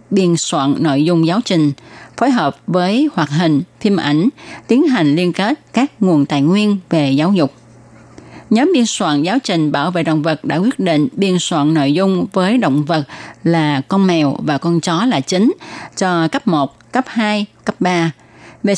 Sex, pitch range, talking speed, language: female, 150-205 Hz, 190 wpm, Vietnamese